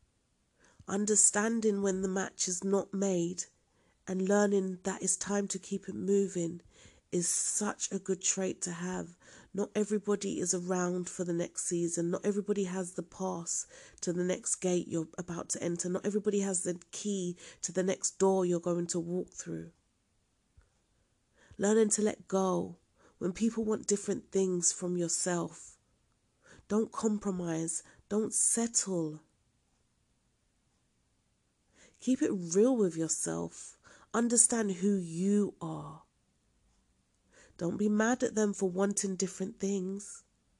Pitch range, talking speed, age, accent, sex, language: 175-205 Hz, 135 wpm, 40-59, British, female, English